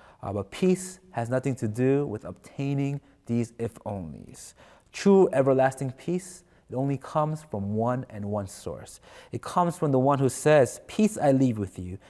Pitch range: 110-145 Hz